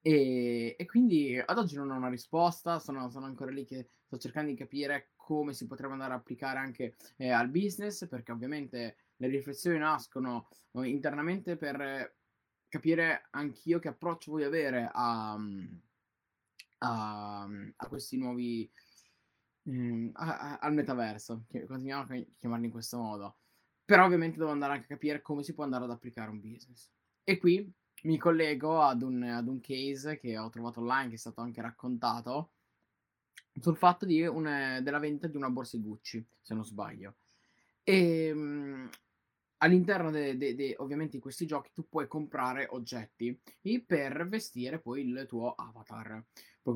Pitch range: 120-155 Hz